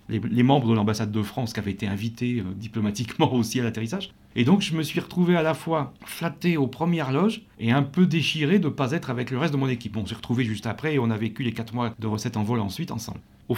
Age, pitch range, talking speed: 40-59, 115-155 Hz, 275 wpm